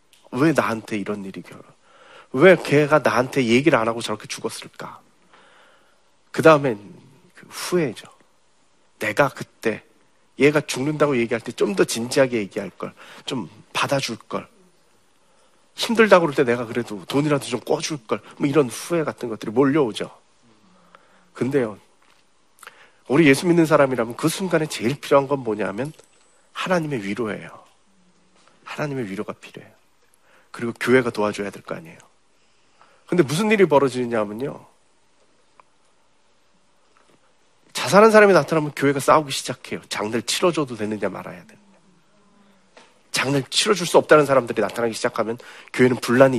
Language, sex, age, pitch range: Korean, male, 40-59, 115-160 Hz